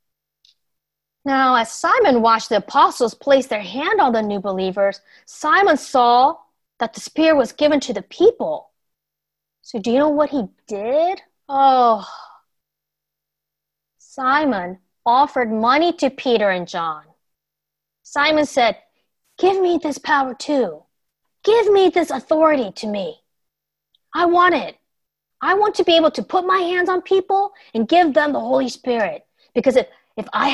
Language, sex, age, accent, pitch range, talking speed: English, female, 30-49, American, 180-295 Hz, 145 wpm